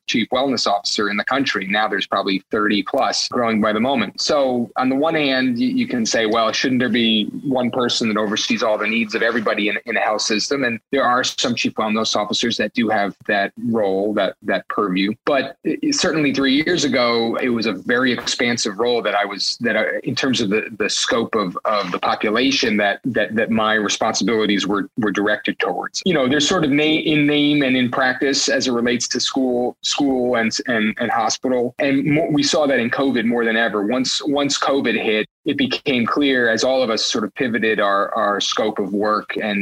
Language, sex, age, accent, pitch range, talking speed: English, male, 30-49, American, 105-130 Hz, 220 wpm